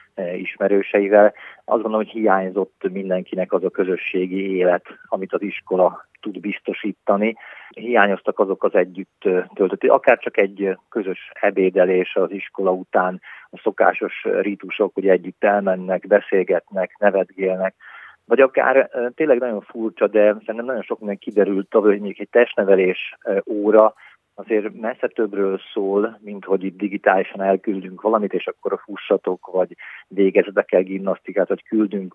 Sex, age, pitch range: male, 40-59, 95-105 Hz